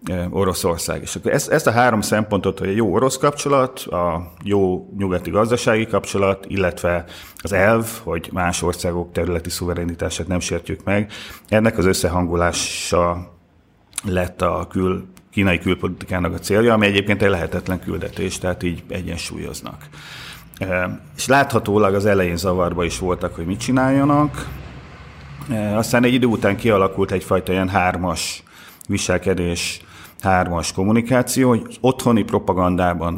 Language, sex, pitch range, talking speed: Hungarian, male, 85-100 Hz, 130 wpm